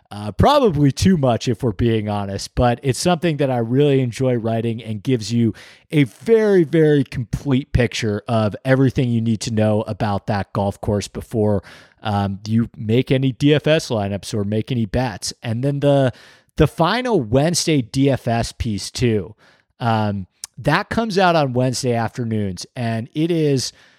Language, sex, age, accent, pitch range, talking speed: English, male, 30-49, American, 110-140 Hz, 160 wpm